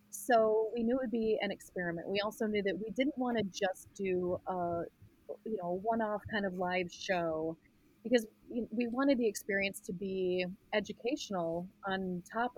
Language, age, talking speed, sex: English, 30-49, 170 wpm, female